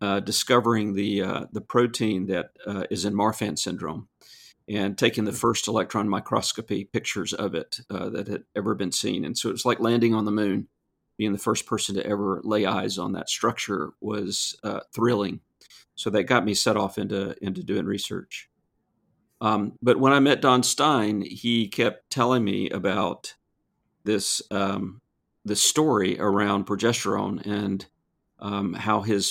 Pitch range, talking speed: 100-110 Hz, 170 wpm